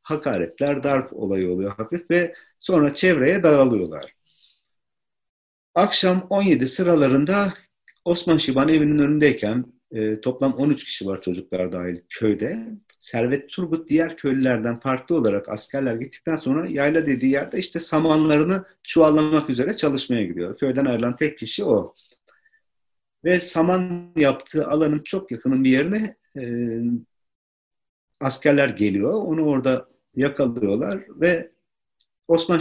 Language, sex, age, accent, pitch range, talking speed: Turkish, male, 50-69, native, 110-150 Hz, 110 wpm